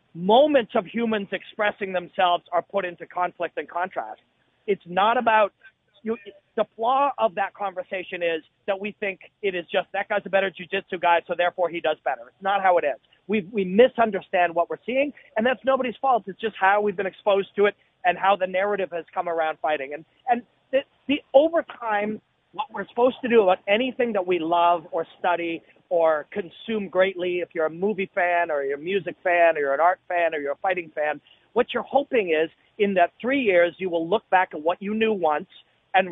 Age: 40-59